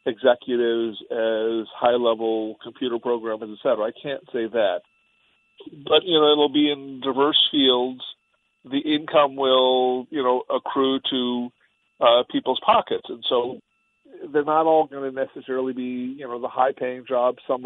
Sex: male